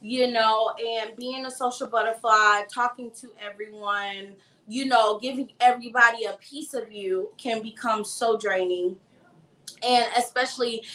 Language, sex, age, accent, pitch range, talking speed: English, female, 20-39, American, 210-250 Hz, 130 wpm